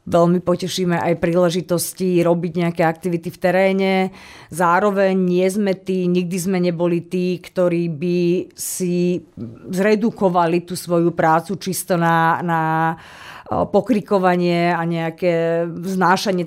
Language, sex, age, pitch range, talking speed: Slovak, female, 30-49, 170-190 Hz, 115 wpm